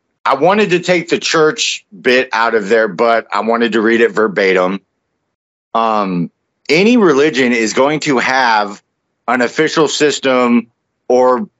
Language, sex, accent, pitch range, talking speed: English, male, American, 110-135 Hz, 145 wpm